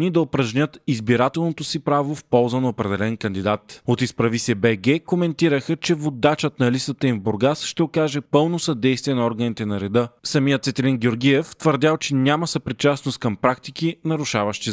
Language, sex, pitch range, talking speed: Bulgarian, male, 120-150 Hz, 165 wpm